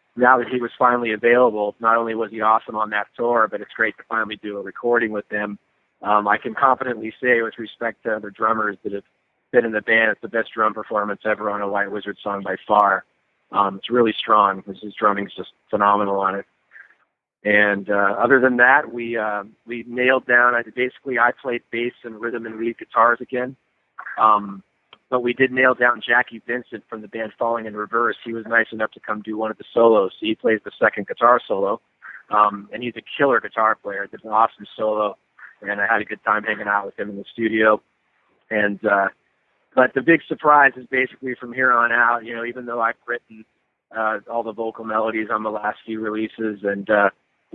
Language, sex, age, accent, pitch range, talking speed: English, male, 40-59, American, 105-120 Hz, 215 wpm